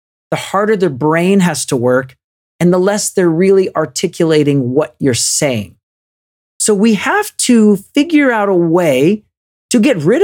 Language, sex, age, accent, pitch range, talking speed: English, male, 40-59, American, 125-180 Hz, 160 wpm